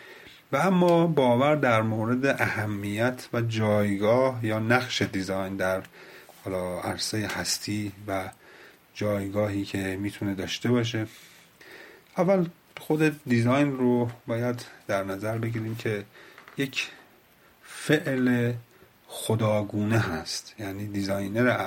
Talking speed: 100 wpm